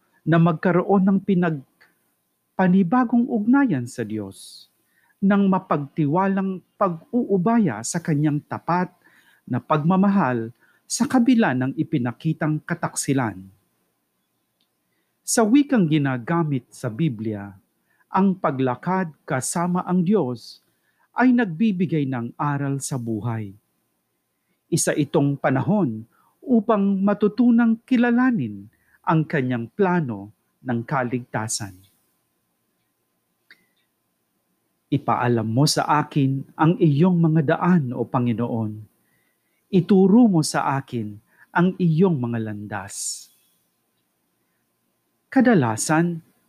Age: 50-69